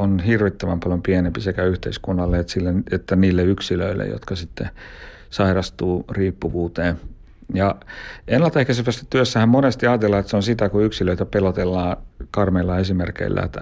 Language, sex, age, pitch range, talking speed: Finnish, male, 60-79, 90-105 Hz, 130 wpm